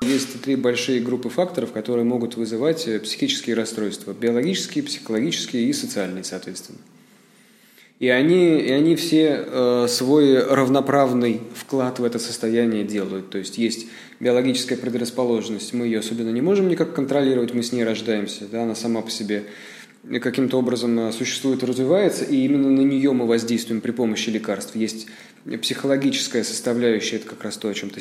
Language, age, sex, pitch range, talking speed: Russian, 20-39, male, 110-130 Hz, 150 wpm